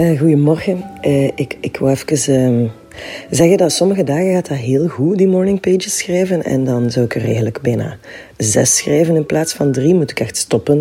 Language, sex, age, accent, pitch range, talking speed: Dutch, female, 40-59, Dutch, 135-165 Hz, 195 wpm